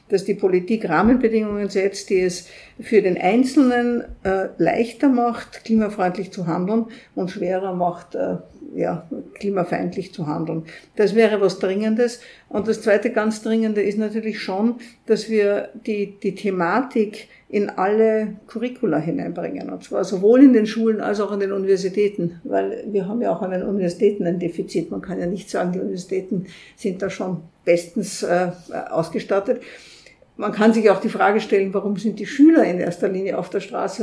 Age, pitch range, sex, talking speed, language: 50-69, 190-225 Hz, female, 170 wpm, German